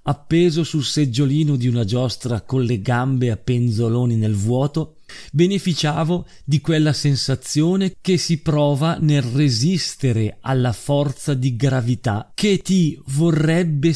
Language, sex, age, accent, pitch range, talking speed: Italian, male, 40-59, native, 120-155 Hz, 125 wpm